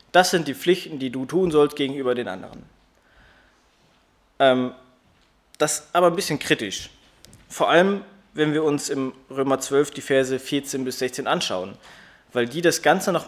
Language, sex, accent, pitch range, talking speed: German, male, German, 120-160 Hz, 165 wpm